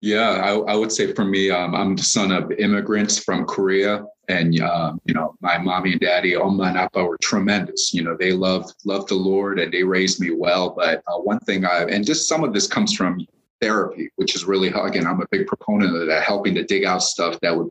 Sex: male